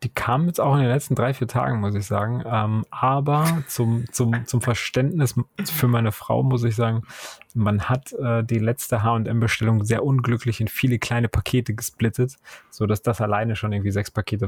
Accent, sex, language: German, male, German